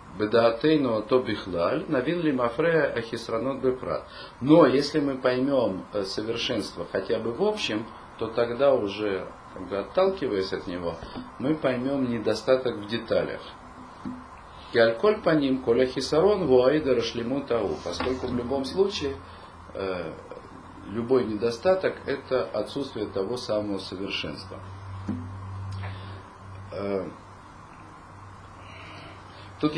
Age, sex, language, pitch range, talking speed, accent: 40-59, male, Russian, 100-135 Hz, 65 wpm, native